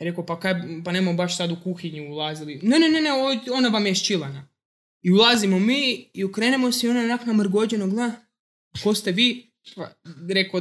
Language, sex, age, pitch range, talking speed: Croatian, male, 20-39, 165-210 Hz, 180 wpm